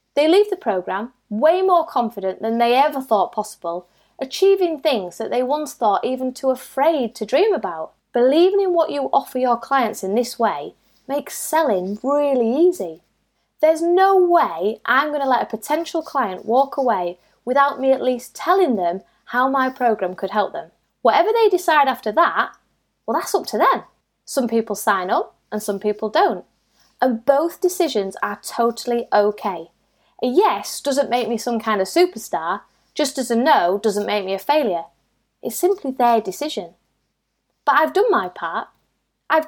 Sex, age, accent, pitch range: female, 20-39, British, 210-300 Hz